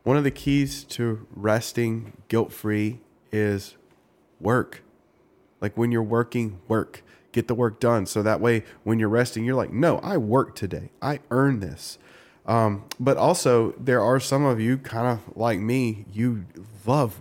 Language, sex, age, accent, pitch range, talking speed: English, male, 20-39, American, 105-125 Hz, 165 wpm